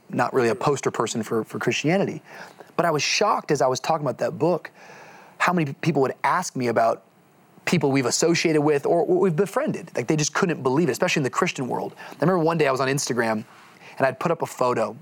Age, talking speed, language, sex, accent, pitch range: 30-49, 230 wpm, English, male, American, 120-160 Hz